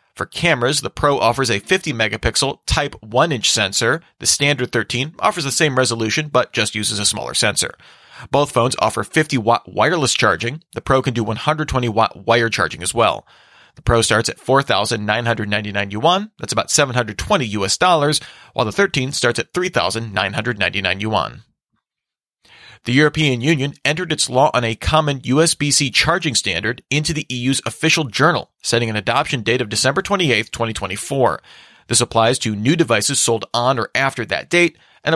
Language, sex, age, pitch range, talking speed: English, male, 30-49, 115-145 Hz, 165 wpm